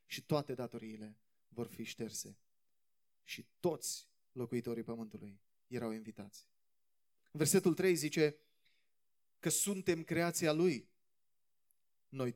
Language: Romanian